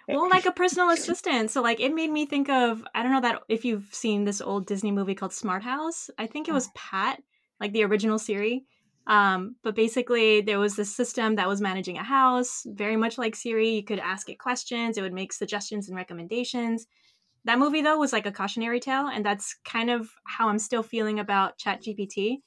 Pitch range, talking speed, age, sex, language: 190-235 Hz, 215 wpm, 20-39, female, English